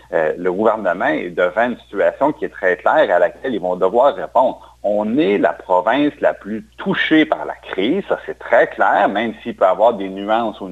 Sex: male